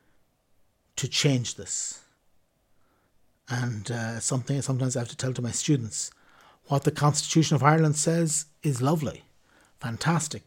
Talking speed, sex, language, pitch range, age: 130 wpm, male, English, 130-160 Hz, 60-79